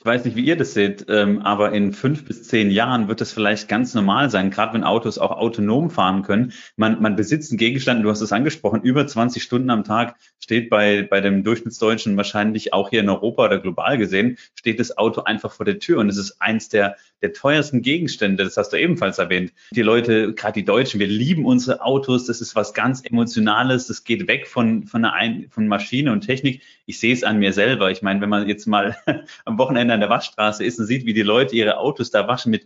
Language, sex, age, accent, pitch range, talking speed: German, male, 30-49, German, 105-125 Hz, 230 wpm